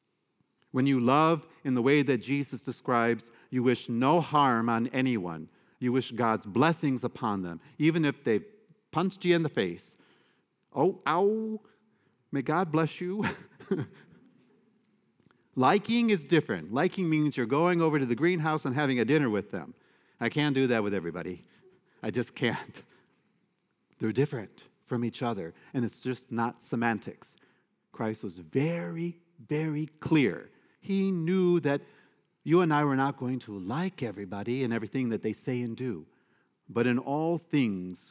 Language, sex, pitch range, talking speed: English, male, 110-155 Hz, 155 wpm